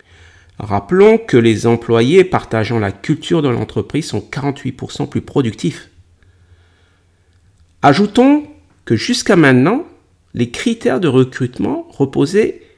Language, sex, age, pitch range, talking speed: French, male, 50-69, 95-135 Hz, 105 wpm